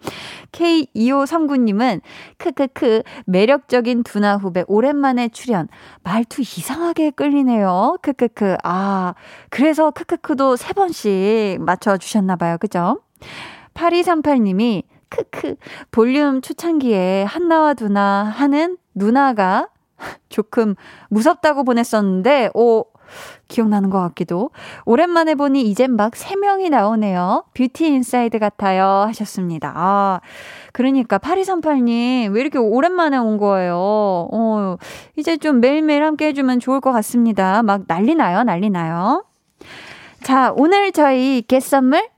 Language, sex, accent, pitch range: Korean, female, native, 205-305 Hz